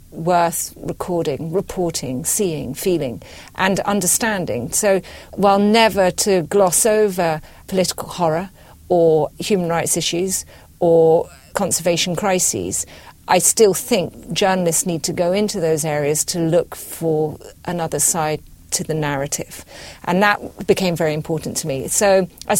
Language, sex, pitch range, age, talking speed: English, female, 160-190 Hz, 40-59, 130 wpm